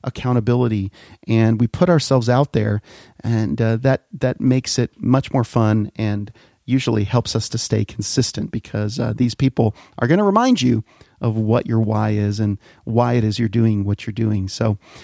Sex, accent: male, American